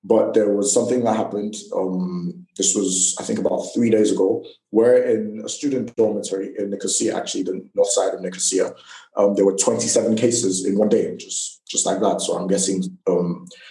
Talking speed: 195 wpm